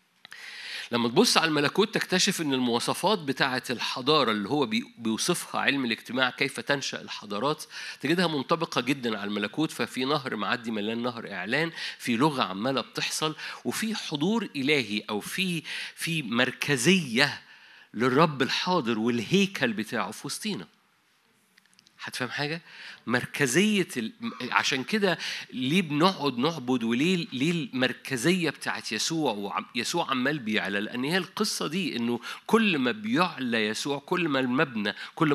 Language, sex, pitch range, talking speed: Arabic, male, 120-185 Hz, 130 wpm